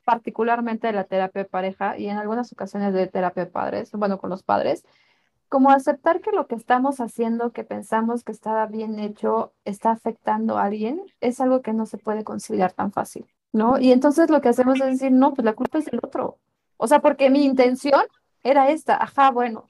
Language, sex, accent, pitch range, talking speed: Spanish, female, Mexican, 220-275 Hz, 205 wpm